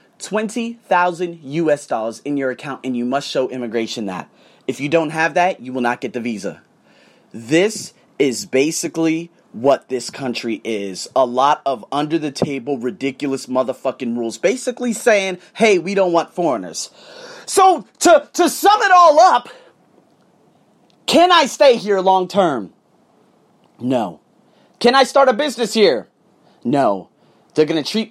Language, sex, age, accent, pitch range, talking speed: English, male, 30-49, American, 140-220 Hz, 150 wpm